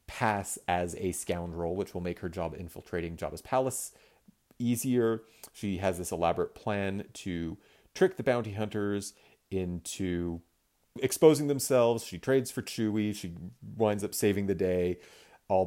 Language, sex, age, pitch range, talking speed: English, male, 30-49, 90-120 Hz, 140 wpm